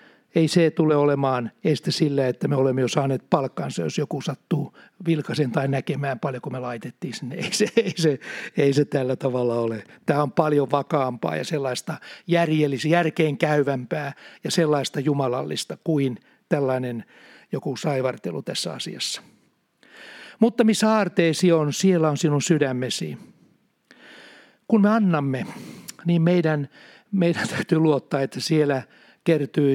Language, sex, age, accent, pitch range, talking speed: Finnish, male, 60-79, native, 140-170 Hz, 140 wpm